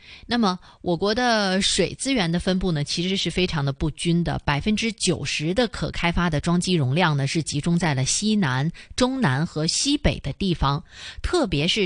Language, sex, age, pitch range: Chinese, female, 30-49, 155-220 Hz